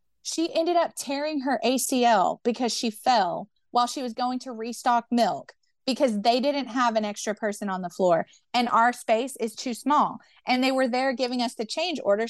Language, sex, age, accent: English, female, 30-49, American